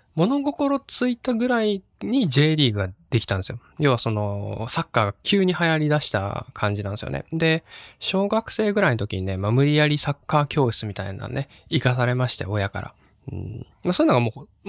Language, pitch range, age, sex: Japanese, 105-155 Hz, 20-39, male